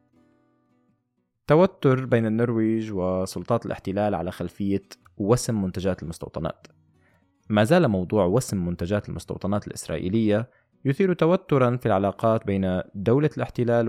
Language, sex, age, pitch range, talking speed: Arabic, male, 20-39, 95-120 Hz, 105 wpm